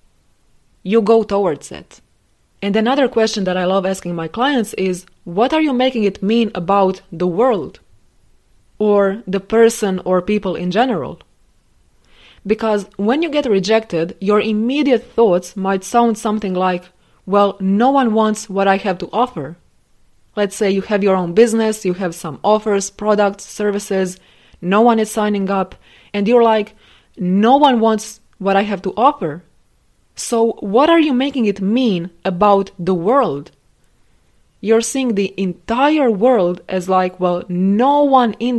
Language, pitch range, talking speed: English, 185-225 Hz, 155 wpm